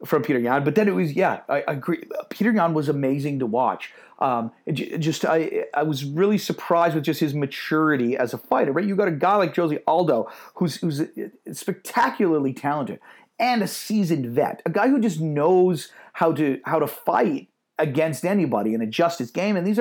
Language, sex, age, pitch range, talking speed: English, male, 40-59, 135-175 Hz, 200 wpm